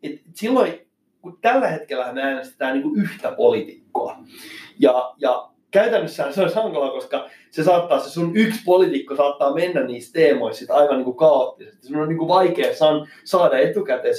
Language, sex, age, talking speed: Finnish, male, 30-49, 160 wpm